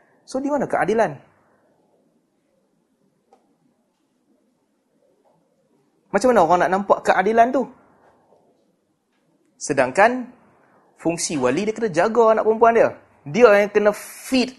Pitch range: 175-240 Hz